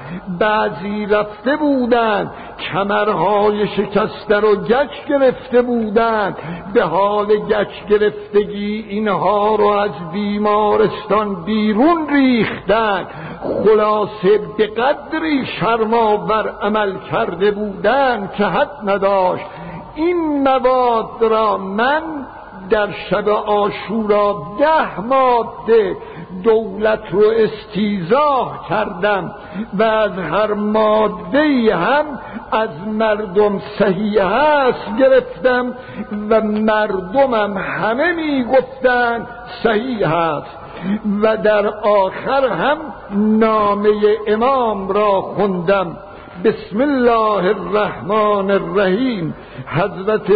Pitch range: 205-235 Hz